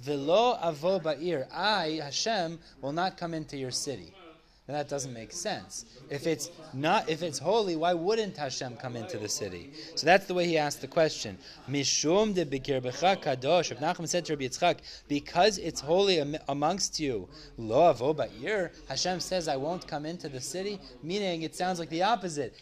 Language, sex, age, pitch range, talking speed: English, male, 20-39, 140-180 Hz, 140 wpm